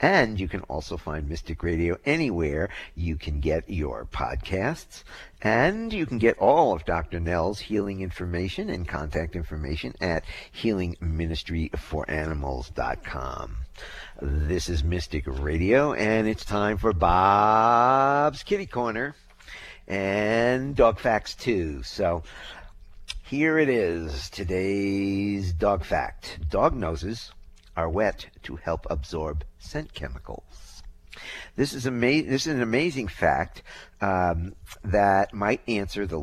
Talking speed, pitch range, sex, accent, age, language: 120 wpm, 80-105 Hz, male, American, 50-69, English